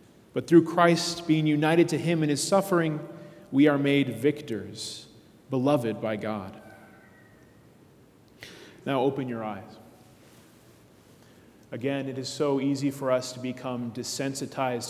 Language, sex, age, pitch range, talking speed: English, male, 30-49, 120-150 Hz, 125 wpm